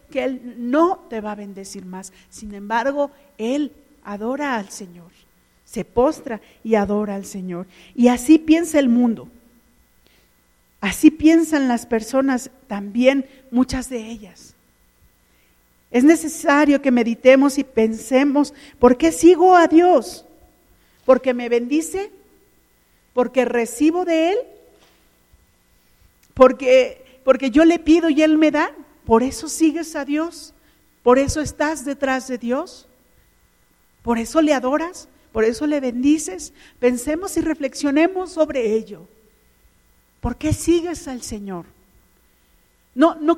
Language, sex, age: Spanish, female, 50-69